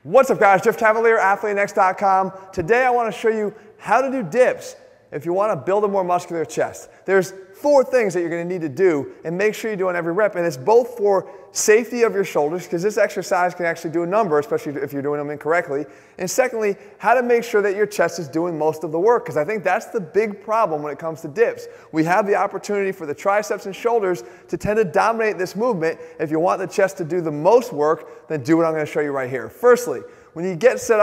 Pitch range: 170-220 Hz